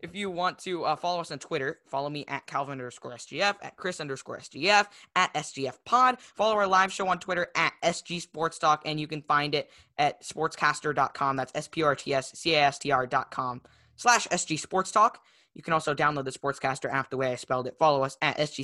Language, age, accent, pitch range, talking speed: English, 10-29, American, 140-175 Hz, 225 wpm